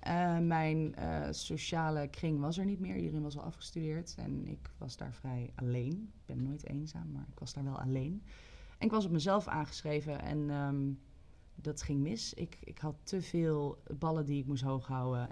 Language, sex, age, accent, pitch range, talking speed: Dutch, female, 20-39, Dutch, 130-160 Hz, 195 wpm